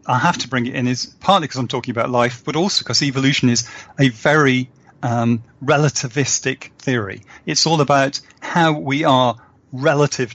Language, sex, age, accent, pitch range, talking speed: English, male, 40-59, British, 120-145 Hz, 175 wpm